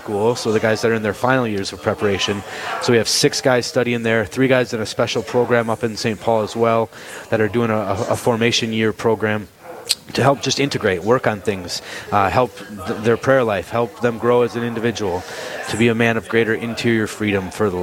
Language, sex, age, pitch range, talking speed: English, male, 30-49, 110-130 Hz, 230 wpm